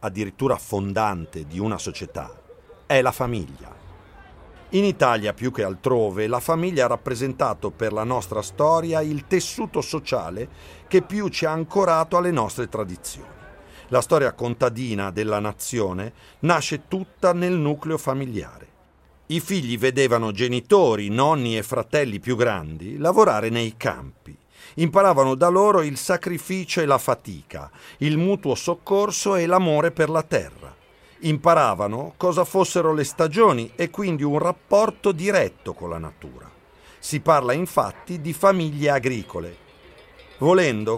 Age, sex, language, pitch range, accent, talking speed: 40-59, male, Italian, 115-175 Hz, native, 130 wpm